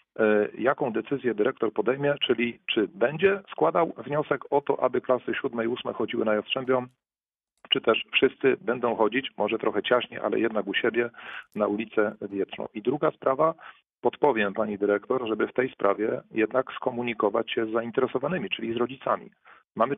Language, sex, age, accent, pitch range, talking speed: Polish, male, 40-59, native, 105-135 Hz, 160 wpm